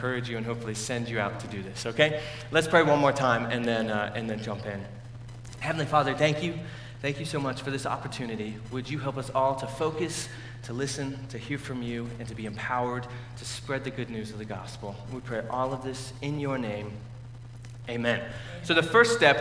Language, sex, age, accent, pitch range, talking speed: English, male, 30-49, American, 120-160 Hz, 225 wpm